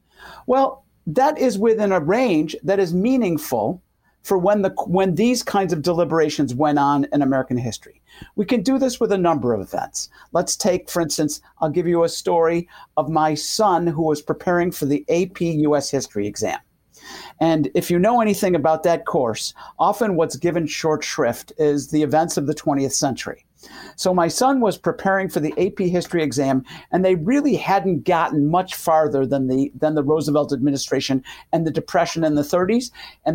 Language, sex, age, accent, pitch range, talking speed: English, male, 50-69, American, 150-195 Hz, 180 wpm